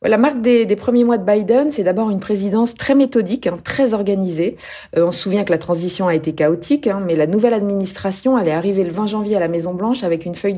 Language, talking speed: French, 245 wpm